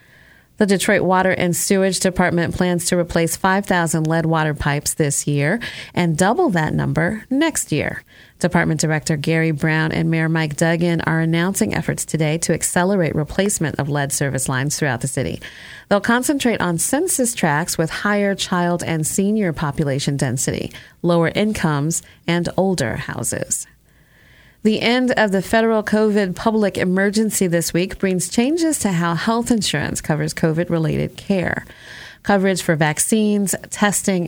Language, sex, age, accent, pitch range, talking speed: English, female, 30-49, American, 160-200 Hz, 145 wpm